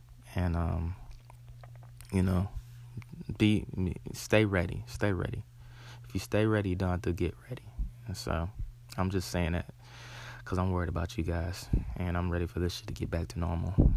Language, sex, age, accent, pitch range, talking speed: English, male, 20-39, American, 90-120 Hz, 180 wpm